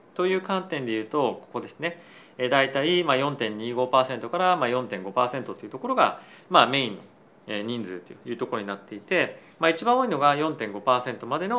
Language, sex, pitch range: Japanese, male, 115-175 Hz